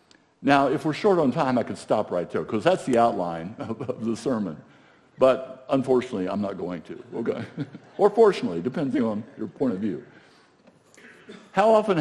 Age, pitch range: 60-79, 115-160 Hz